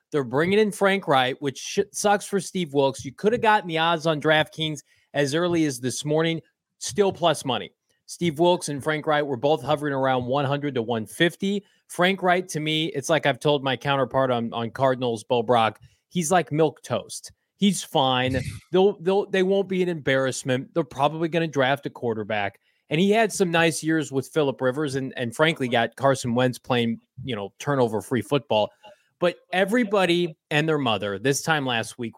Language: English